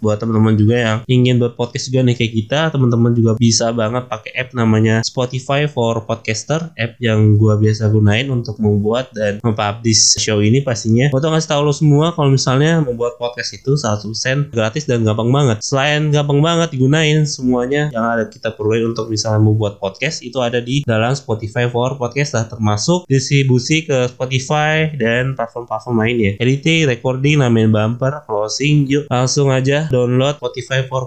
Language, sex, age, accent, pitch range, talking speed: Indonesian, male, 20-39, native, 110-135 Hz, 170 wpm